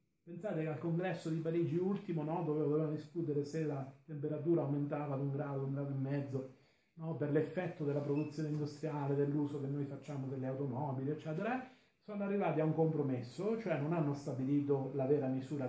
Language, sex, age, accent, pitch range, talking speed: Italian, male, 40-59, native, 145-190 Hz, 185 wpm